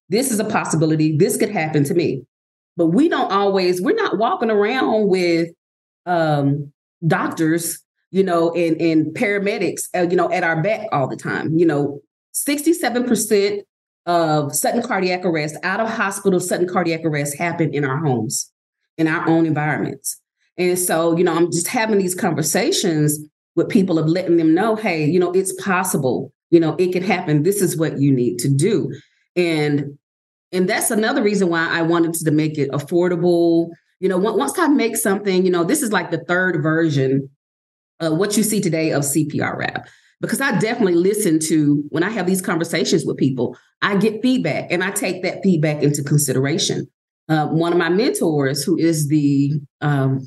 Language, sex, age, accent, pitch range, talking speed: English, female, 30-49, American, 150-190 Hz, 180 wpm